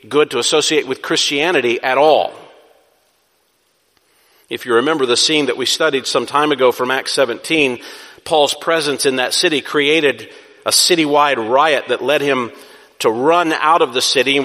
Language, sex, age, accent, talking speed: English, male, 50-69, American, 165 wpm